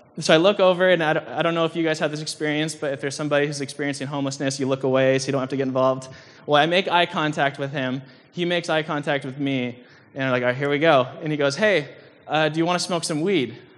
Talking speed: 280 wpm